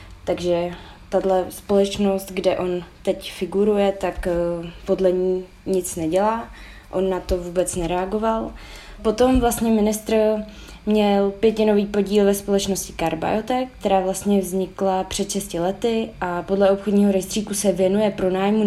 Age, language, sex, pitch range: 20-39, Czech, female, 185-205 Hz